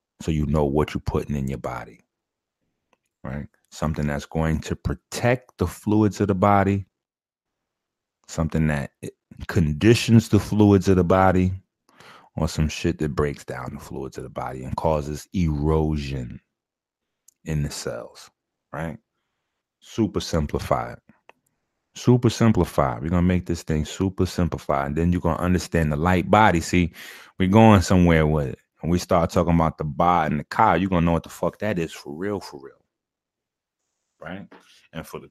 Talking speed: 170 wpm